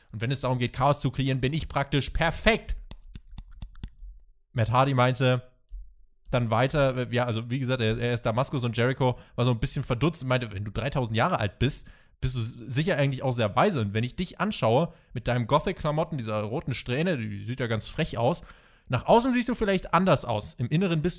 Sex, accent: male, German